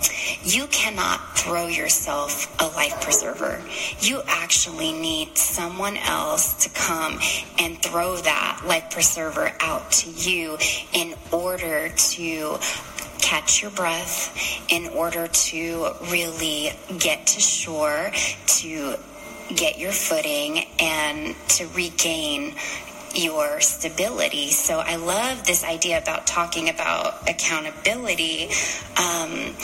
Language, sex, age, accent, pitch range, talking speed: English, female, 20-39, American, 170-245 Hz, 110 wpm